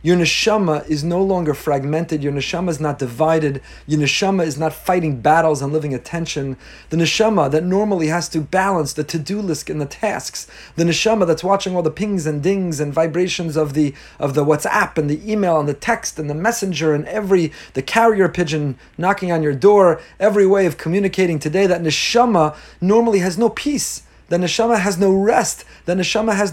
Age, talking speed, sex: 30-49, 195 wpm, male